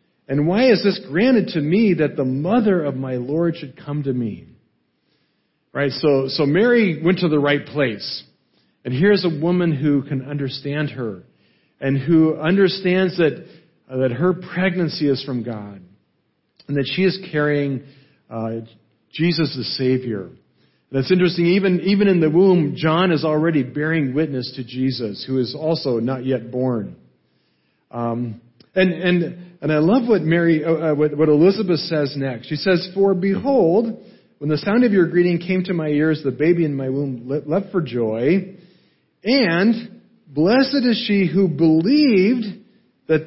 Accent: American